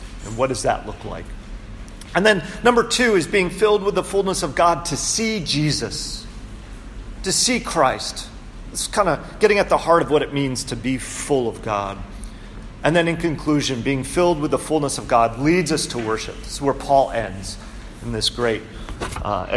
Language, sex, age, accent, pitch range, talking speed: English, male, 40-59, American, 110-170 Hz, 195 wpm